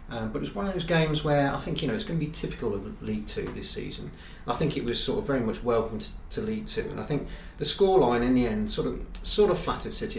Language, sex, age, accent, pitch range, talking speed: English, male, 30-49, British, 110-135 Hz, 295 wpm